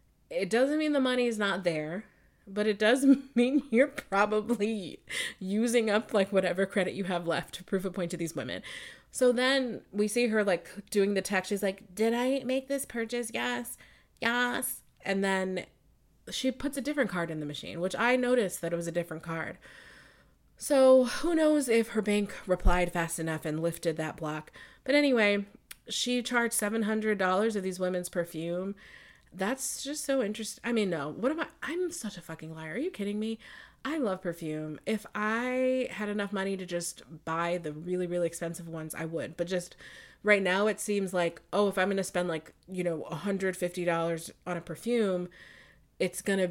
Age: 20-39